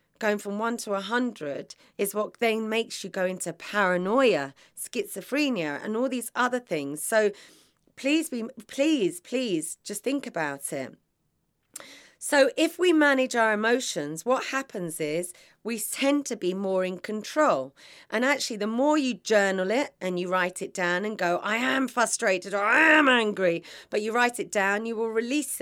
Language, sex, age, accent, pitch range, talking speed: English, female, 40-59, British, 185-245 Hz, 175 wpm